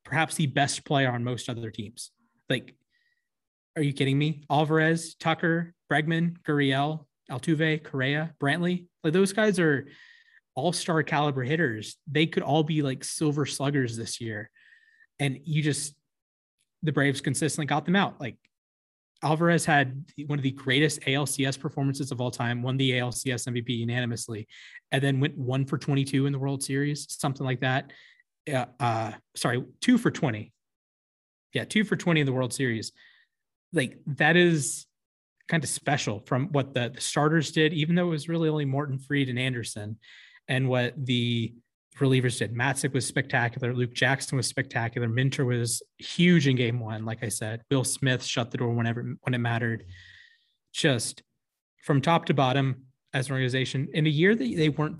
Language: English